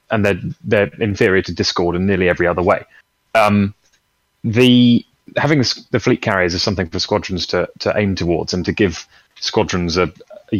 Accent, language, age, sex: British, English, 30-49, male